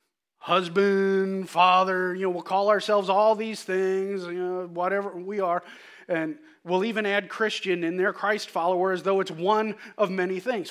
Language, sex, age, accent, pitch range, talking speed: English, male, 30-49, American, 165-240 Hz, 165 wpm